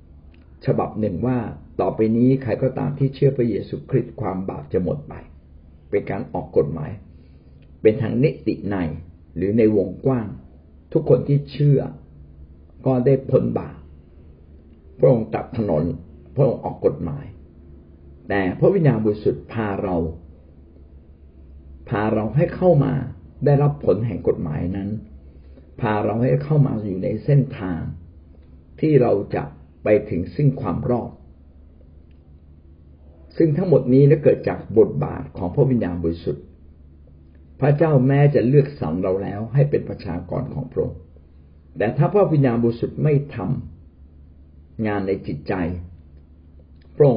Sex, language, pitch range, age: male, Thai, 75-125 Hz, 60-79